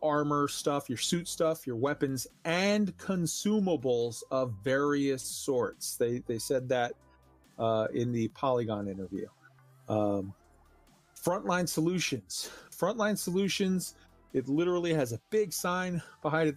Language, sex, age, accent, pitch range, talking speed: English, male, 40-59, American, 125-170 Hz, 125 wpm